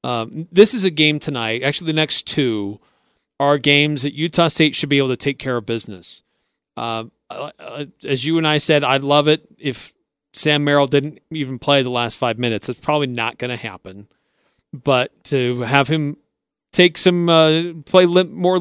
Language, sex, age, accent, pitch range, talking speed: English, male, 40-59, American, 135-160 Hz, 195 wpm